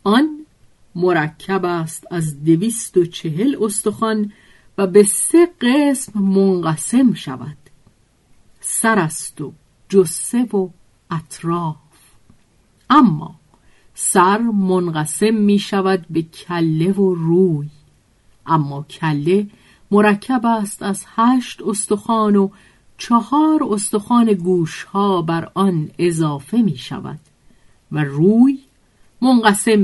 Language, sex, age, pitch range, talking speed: Persian, female, 50-69, 160-220 Hz, 95 wpm